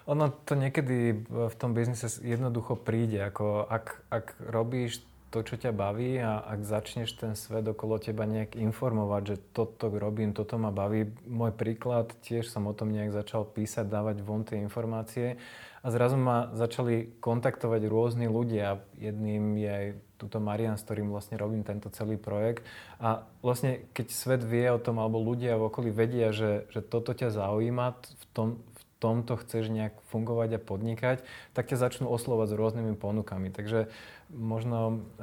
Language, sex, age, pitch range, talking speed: Slovak, male, 20-39, 105-115 Hz, 165 wpm